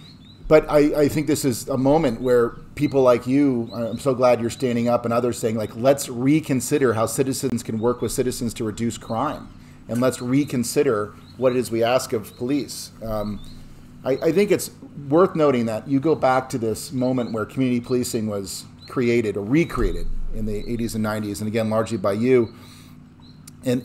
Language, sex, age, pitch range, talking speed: English, male, 40-59, 110-130 Hz, 190 wpm